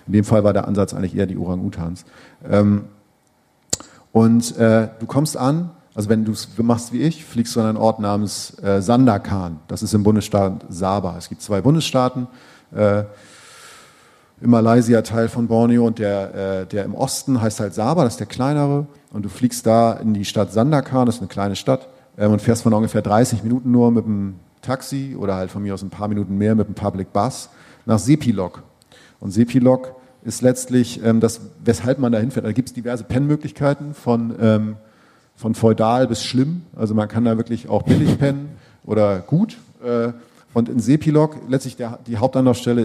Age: 40-59